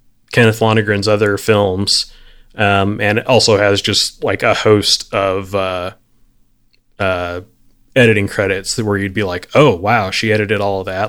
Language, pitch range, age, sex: English, 105-120 Hz, 20-39, male